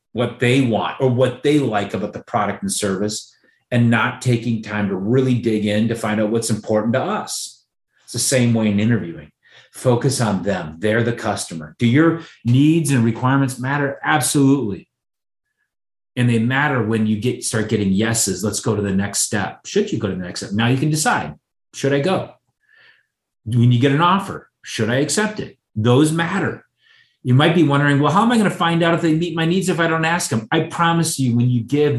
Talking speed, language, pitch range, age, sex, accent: 215 wpm, English, 110-145 Hz, 40-59, male, American